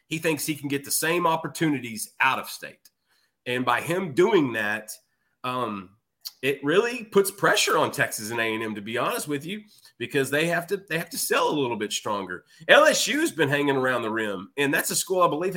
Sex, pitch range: male, 135-175 Hz